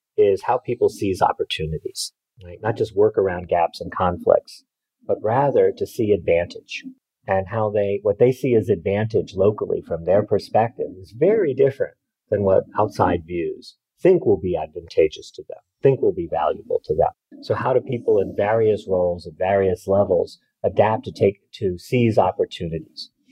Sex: male